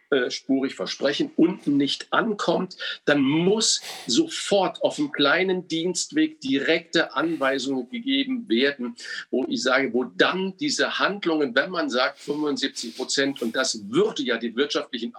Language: German